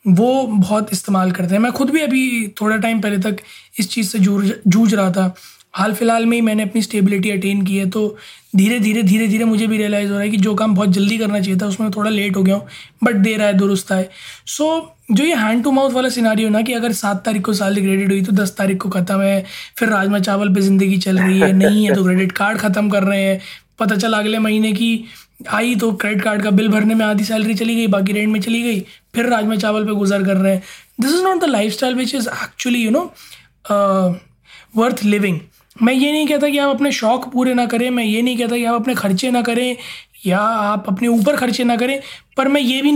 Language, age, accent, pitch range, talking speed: Hindi, 20-39, native, 200-235 Hz, 245 wpm